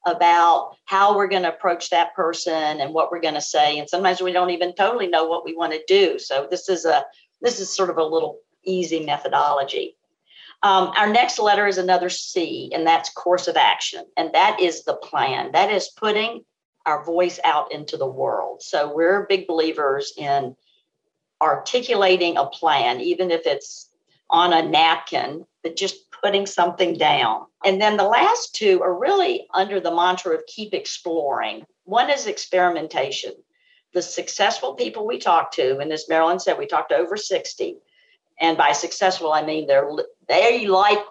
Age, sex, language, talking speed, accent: 50-69, female, English, 175 wpm, American